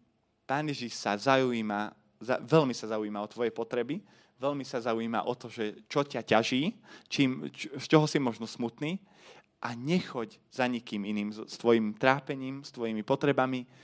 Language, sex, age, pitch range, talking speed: Slovak, male, 20-39, 115-150 Hz, 160 wpm